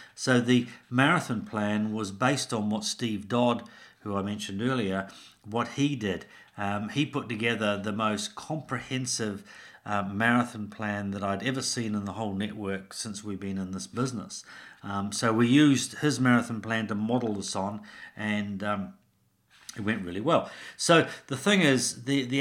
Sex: male